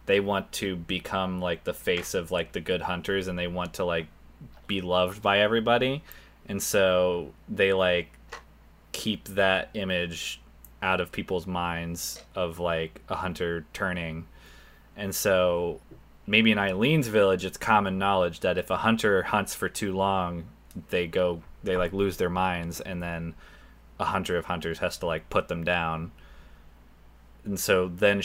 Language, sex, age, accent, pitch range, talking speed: English, male, 20-39, American, 85-95 Hz, 160 wpm